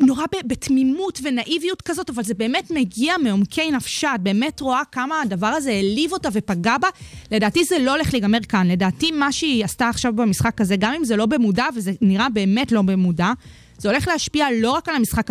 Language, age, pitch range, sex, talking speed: Hebrew, 20-39, 205-265 Hz, female, 195 wpm